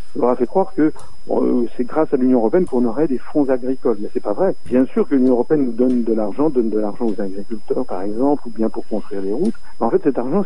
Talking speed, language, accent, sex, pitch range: 270 wpm, French, French, male, 115-150 Hz